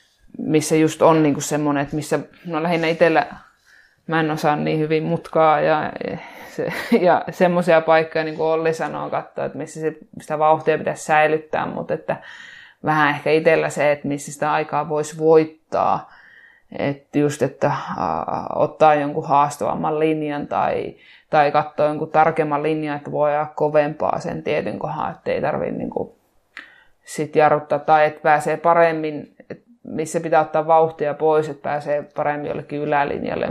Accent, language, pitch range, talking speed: native, Finnish, 150-165 Hz, 150 wpm